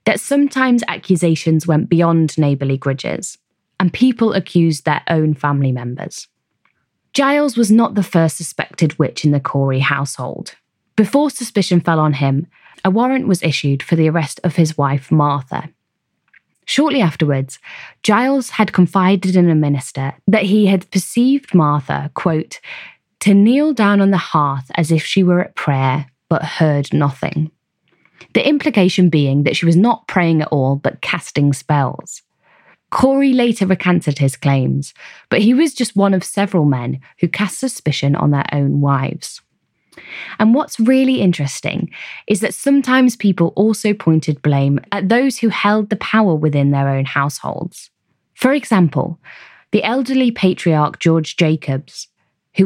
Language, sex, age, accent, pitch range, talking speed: English, female, 20-39, British, 145-215 Hz, 150 wpm